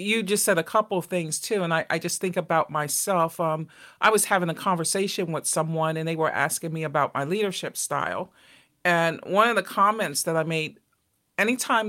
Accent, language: American, English